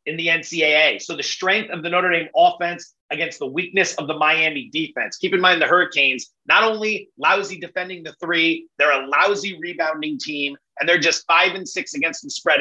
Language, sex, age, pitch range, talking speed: English, male, 30-49, 165-210 Hz, 205 wpm